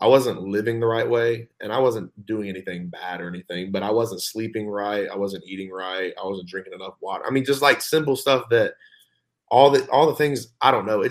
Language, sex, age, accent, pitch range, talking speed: English, male, 20-39, American, 90-105 Hz, 240 wpm